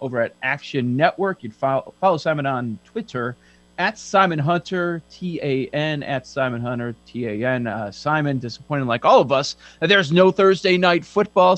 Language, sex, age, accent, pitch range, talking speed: English, male, 40-59, American, 115-150 Hz, 155 wpm